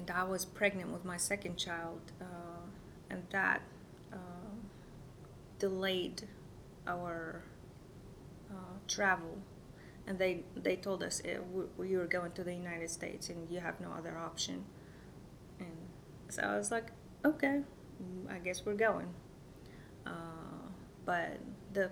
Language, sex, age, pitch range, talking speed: English, female, 20-39, 170-195 Hz, 135 wpm